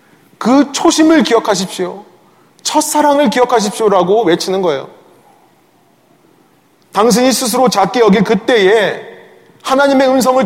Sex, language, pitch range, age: male, Korean, 175-235 Hz, 30-49